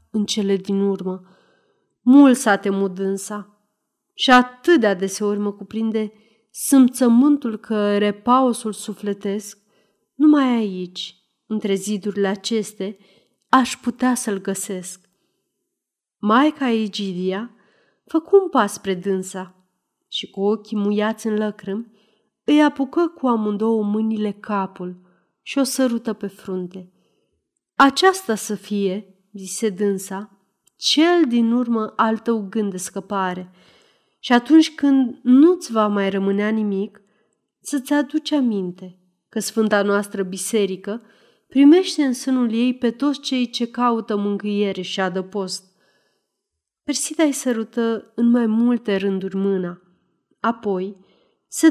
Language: Romanian